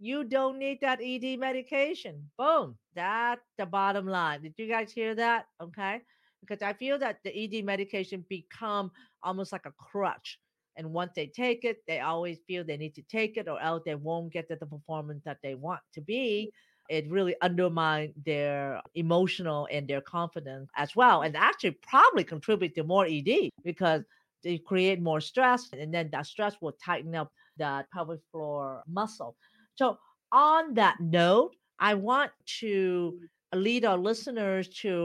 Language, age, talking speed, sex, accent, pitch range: English, 50-69, 170 wpm, female, American, 160-210 Hz